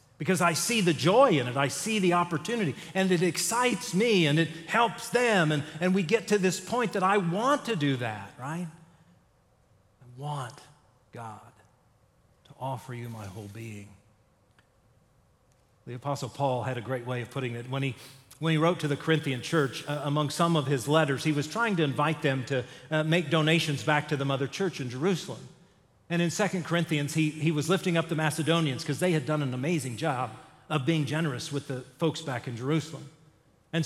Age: 40-59